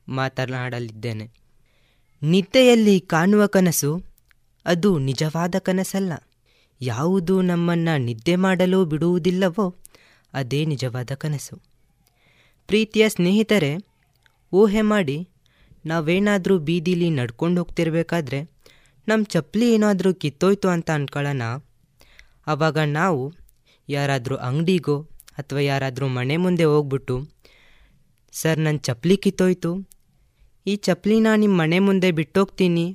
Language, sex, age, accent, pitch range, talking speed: Kannada, female, 20-39, native, 140-190 Hz, 90 wpm